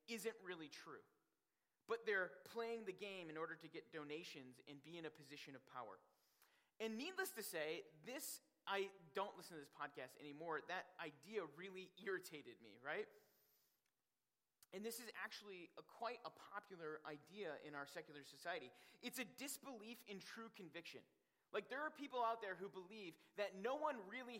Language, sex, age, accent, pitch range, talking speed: English, male, 30-49, American, 160-225 Hz, 170 wpm